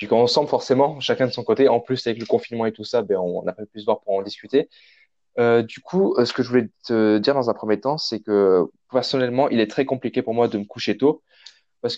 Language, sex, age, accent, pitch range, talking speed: French, male, 20-39, French, 110-135 Hz, 265 wpm